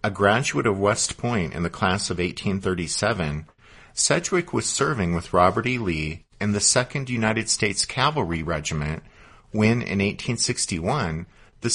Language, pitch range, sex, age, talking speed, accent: English, 90-120 Hz, male, 50-69, 145 wpm, American